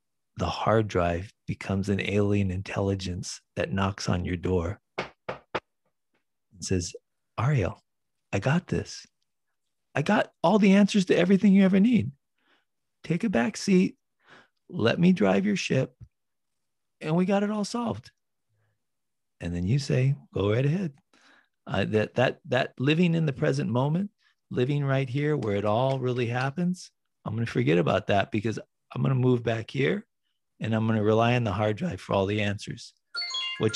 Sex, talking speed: male, 165 wpm